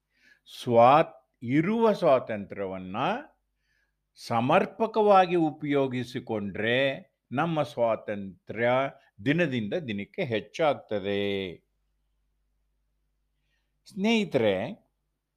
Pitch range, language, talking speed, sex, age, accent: 115-170 Hz, Kannada, 45 wpm, male, 50-69, native